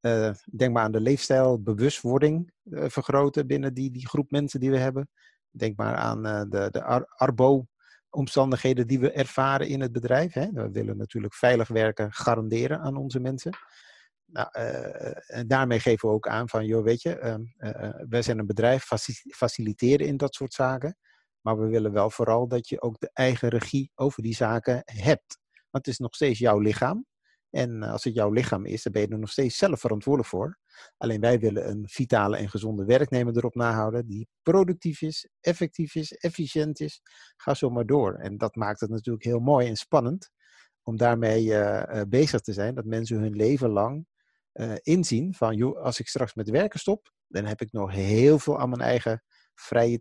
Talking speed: 195 wpm